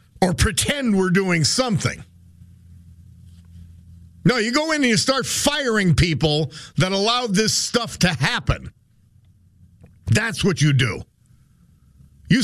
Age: 50-69